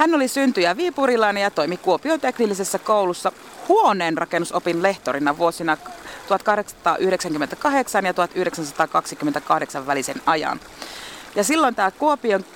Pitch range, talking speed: 175-225 Hz, 100 wpm